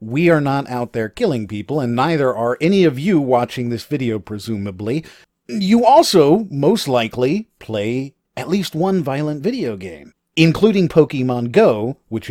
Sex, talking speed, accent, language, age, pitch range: male, 155 wpm, American, English, 40-59, 115-160 Hz